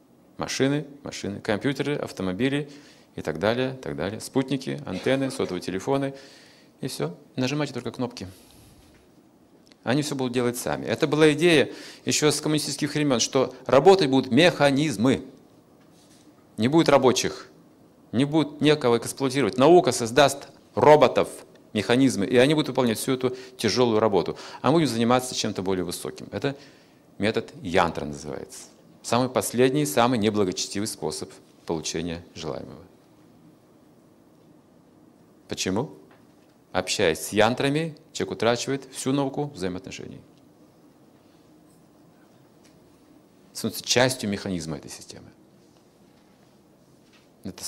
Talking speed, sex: 105 wpm, male